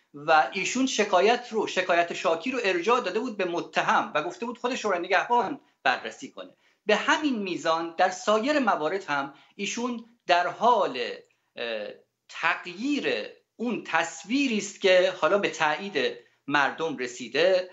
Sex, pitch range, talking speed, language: male, 145-240 Hz, 135 wpm, Persian